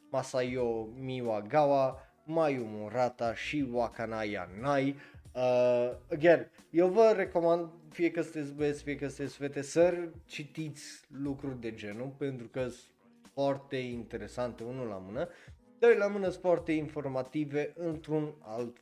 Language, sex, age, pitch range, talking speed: Romanian, male, 20-39, 115-150 Hz, 130 wpm